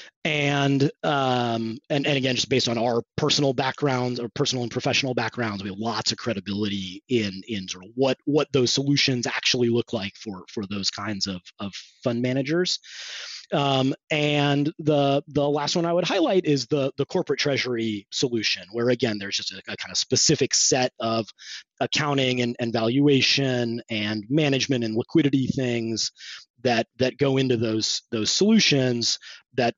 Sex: male